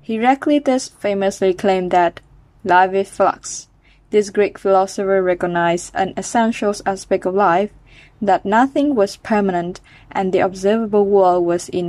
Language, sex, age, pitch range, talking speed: Vietnamese, female, 20-39, 185-220 Hz, 130 wpm